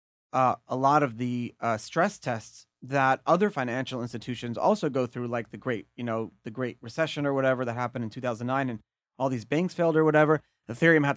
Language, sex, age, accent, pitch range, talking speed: English, male, 30-49, American, 125-165 Hz, 205 wpm